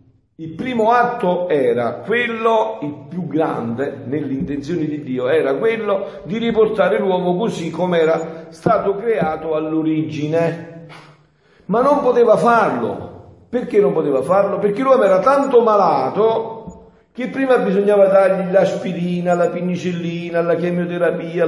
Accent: native